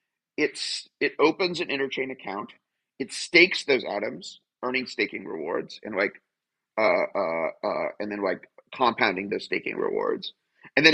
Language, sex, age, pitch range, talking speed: English, male, 30-49, 115-160 Hz, 150 wpm